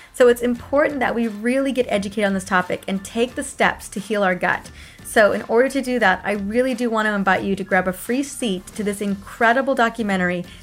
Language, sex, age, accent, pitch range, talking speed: English, female, 20-39, American, 195-245 Hz, 230 wpm